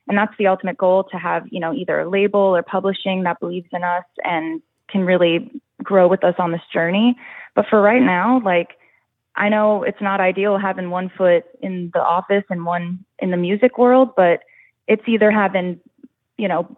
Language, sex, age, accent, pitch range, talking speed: English, female, 20-39, American, 175-210 Hz, 195 wpm